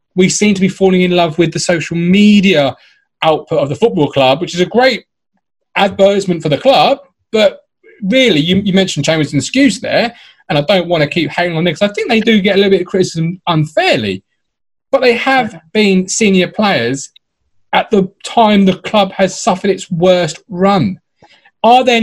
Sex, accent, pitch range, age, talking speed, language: male, British, 150-205 Hz, 30-49, 195 wpm, English